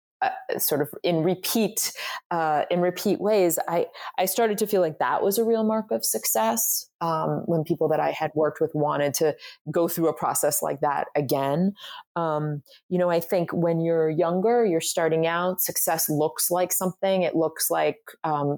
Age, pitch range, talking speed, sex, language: 30-49, 150-185 Hz, 185 wpm, female, English